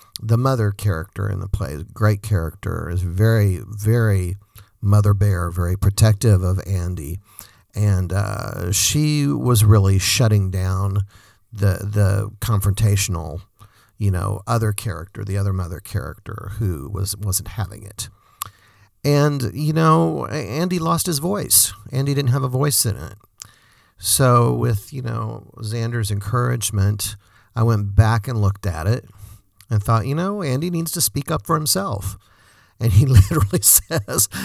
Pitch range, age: 100-120 Hz, 50-69